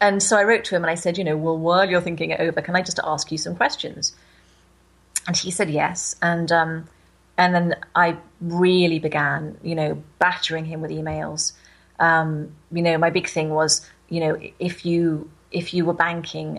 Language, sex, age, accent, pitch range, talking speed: English, female, 30-49, British, 155-175 Hz, 205 wpm